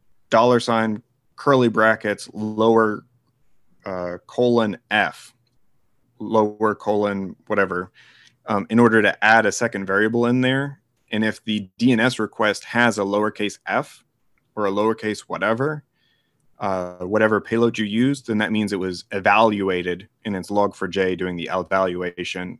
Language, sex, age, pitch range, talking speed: English, male, 30-49, 95-120 Hz, 135 wpm